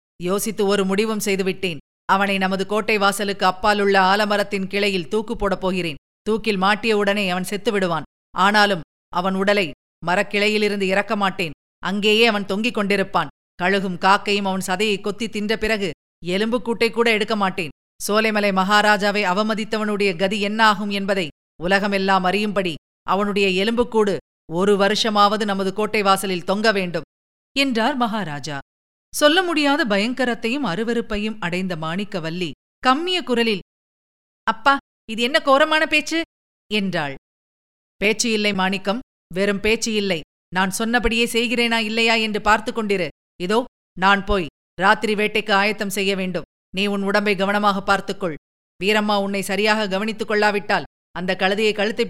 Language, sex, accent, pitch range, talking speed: Tamil, female, native, 190-220 Hz, 115 wpm